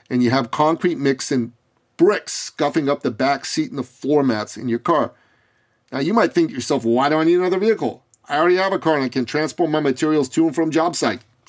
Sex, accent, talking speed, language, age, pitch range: male, American, 245 wpm, English, 40-59, 135-225 Hz